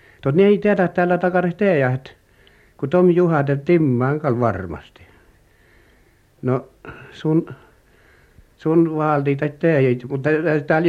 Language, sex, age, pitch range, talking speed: Finnish, male, 60-79, 110-155 Hz, 120 wpm